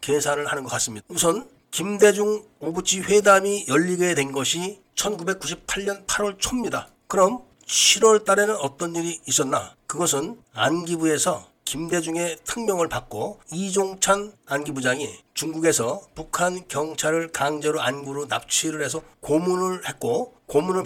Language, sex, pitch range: Korean, male, 155-190 Hz